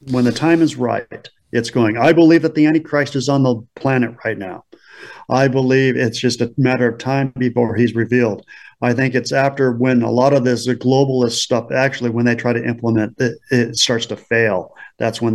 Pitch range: 115-135 Hz